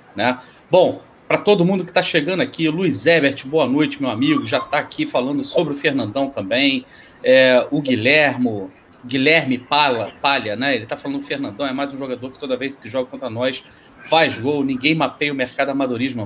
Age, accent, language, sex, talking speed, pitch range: 40-59, Brazilian, Portuguese, male, 195 wpm, 130-165 Hz